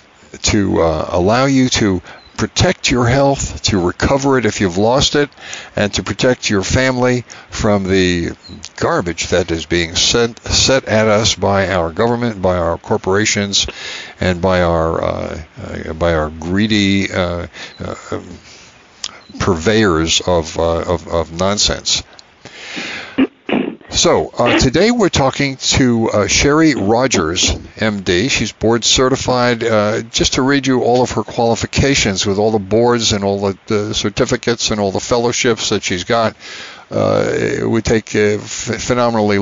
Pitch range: 95-120 Hz